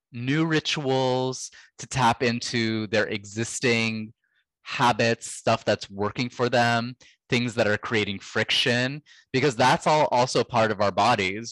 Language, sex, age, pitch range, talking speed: English, male, 20-39, 105-125 Hz, 135 wpm